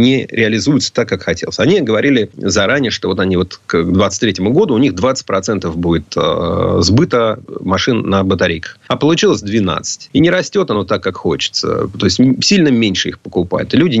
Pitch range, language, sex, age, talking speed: 95-135 Hz, Russian, male, 30-49, 180 wpm